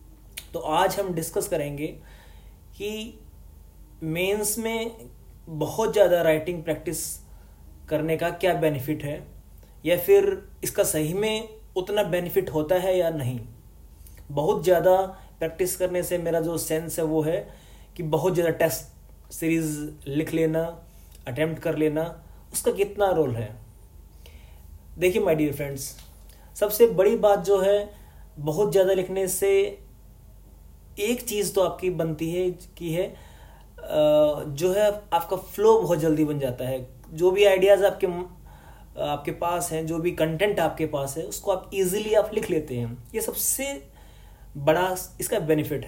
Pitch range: 145-195 Hz